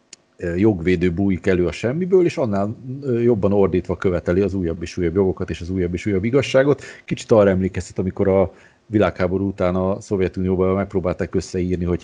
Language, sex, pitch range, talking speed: Hungarian, male, 90-115 Hz, 165 wpm